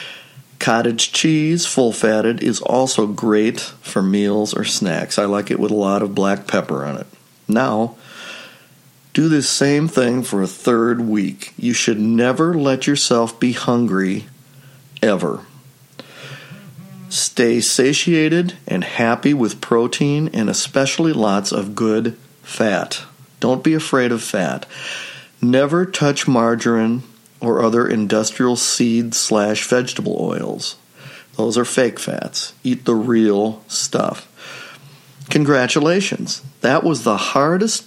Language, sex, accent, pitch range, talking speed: English, male, American, 110-140 Hz, 125 wpm